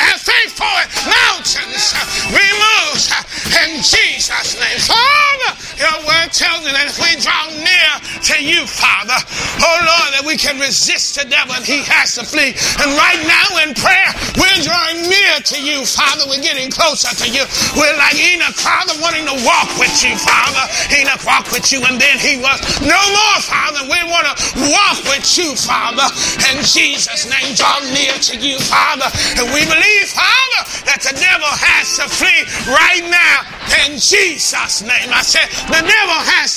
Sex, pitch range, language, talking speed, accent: male, 275-350 Hz, English, 170 wpm, American